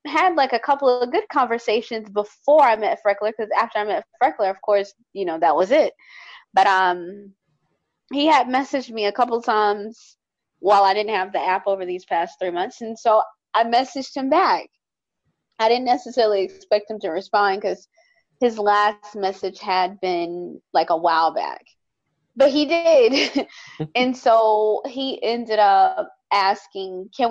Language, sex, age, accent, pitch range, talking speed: English, female, 20-39, American, 195-270 Hz, 170 wpm